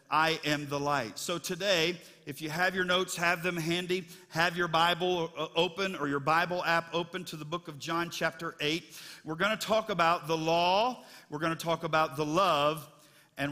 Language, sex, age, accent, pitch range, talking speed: English, male, 50-69, American, 140-170 Hz, 200 wpm